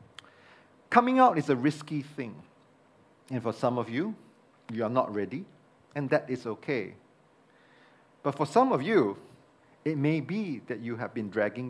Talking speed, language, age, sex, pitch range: 165 wpm, English, 40-59, male, 120-155 Hz